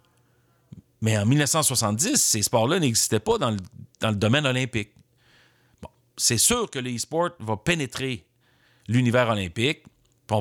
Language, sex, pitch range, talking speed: French, male, 115-145 Hz, 120 wpm